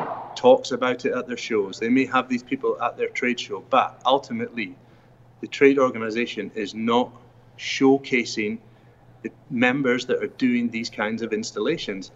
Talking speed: 160 wpm